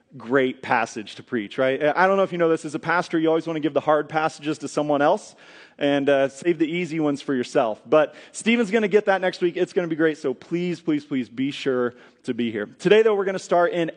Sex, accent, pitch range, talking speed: male, American, 145-185 Hz, 270 wpm